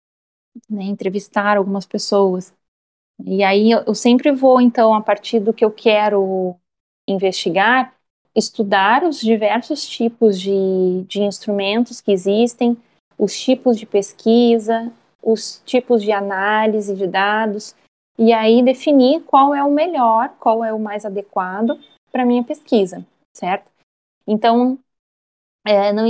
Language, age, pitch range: Portuguese, 20-39, 200-235 Hz